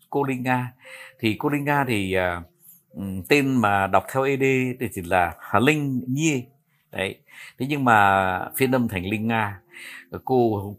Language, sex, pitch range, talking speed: Vietnamese, male, 95-145 Hz, 165 wpm